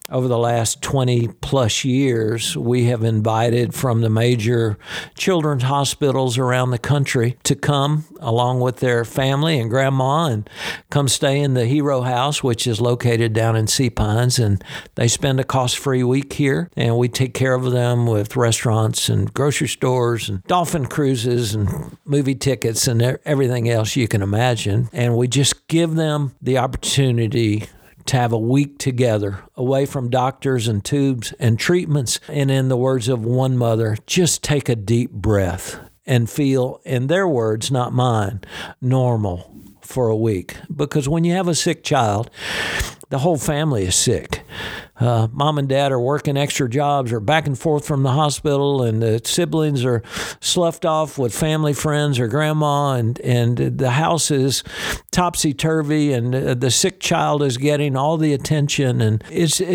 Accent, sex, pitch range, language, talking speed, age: American, male, 115-145 Hz, English, 165 wpm, 60-79